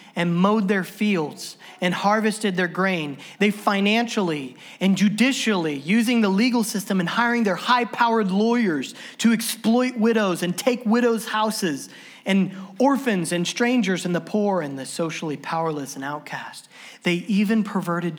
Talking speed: 145 wpm